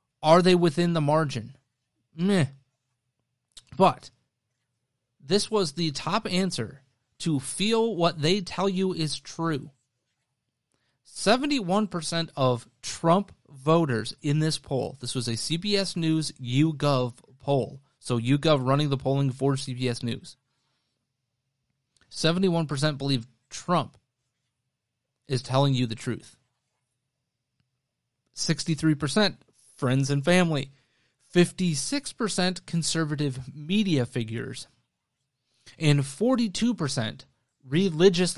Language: English